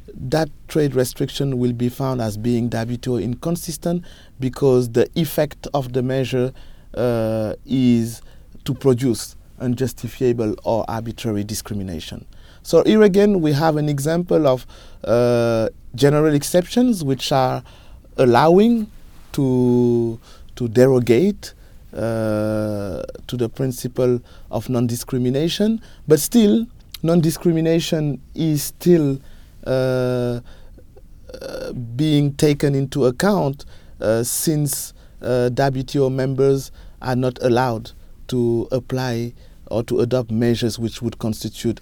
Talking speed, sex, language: 105 wpm, male, English